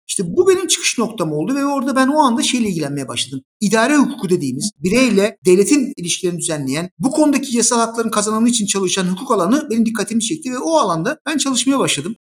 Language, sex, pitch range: Turkish, male, 180-260 Hz